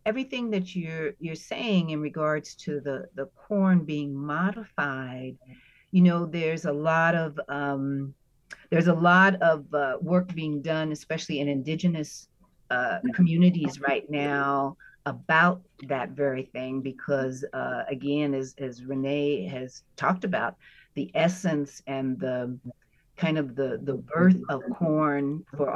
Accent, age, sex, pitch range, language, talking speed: American, 50-69, female, 135-170 Hz, English, 140 wpm